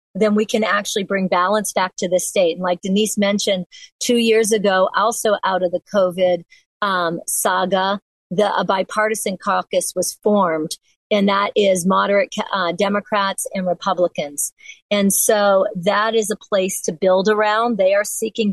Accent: American